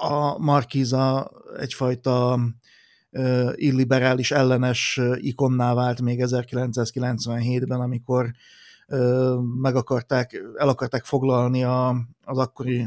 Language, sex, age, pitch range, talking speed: Hungarian, male, 30-49, 125-135 Hz, 80 wpm